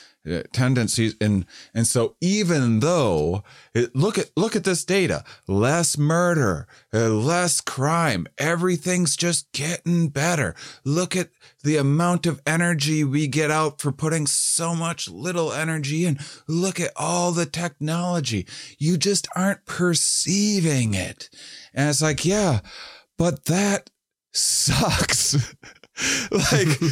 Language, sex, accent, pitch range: English, male, American, 150-205 Hz